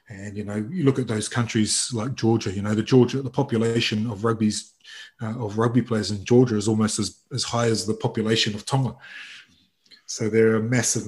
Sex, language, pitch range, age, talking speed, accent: male, English, 105-120 Hz, 30-49, 205 wpm, British